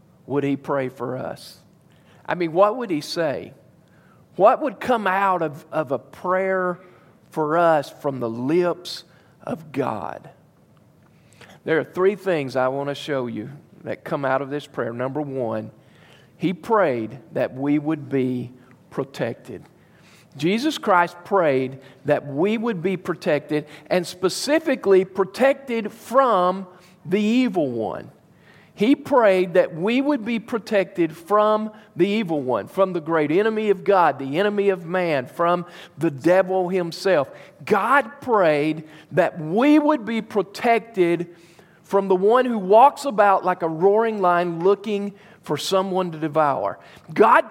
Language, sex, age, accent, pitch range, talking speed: English, male, 50-69, American, 155-210 Hz, 145 wpm